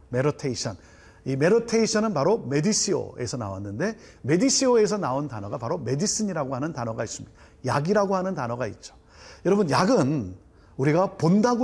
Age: 40-59